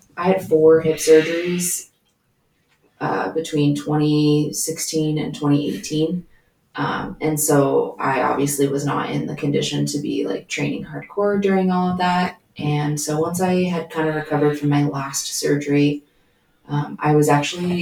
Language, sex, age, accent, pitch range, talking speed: English, female, 20-39, American, 145-165 Hz, 150 wpm